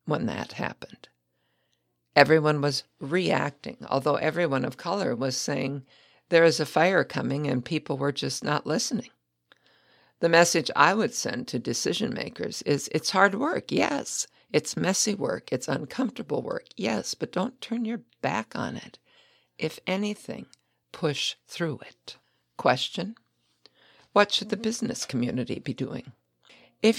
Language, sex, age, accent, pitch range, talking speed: English, female, 60-79, American, 130-175 Hz, 140 wpm